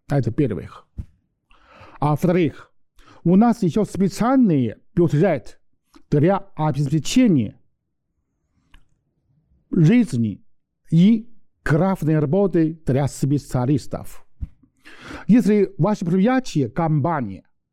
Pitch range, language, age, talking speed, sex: 140-190 Hz, Russian, 50-69, 70 wpm, male